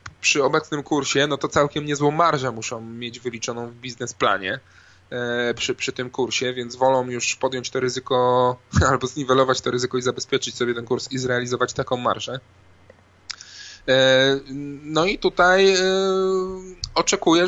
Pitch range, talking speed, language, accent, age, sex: 125-165 Hz, 135 wpm, Polish, native, 20-39, male